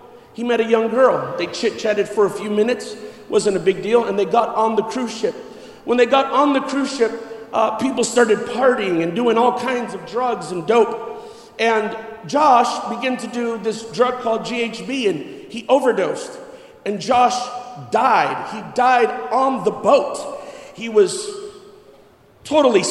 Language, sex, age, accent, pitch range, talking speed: English, male, 50-69, American, 225-275 Hz, 170 wpm